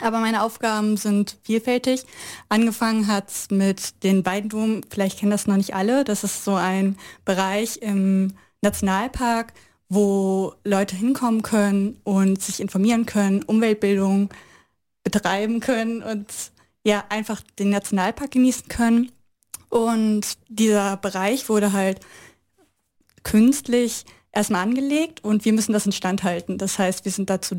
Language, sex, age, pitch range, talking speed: German, female, 20-39, 195-225 Hz, 135 wpm